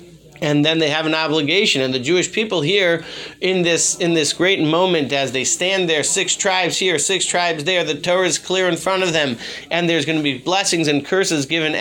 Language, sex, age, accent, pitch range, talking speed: English, male, 40-59, American, 150-180 Hz, 225 wpm